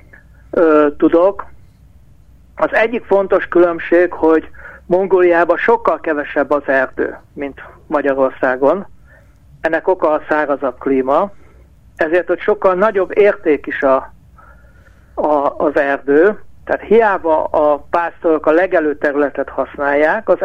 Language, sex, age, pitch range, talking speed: Hungarian, male, 60-79, 150-180 Hz, 105 wpm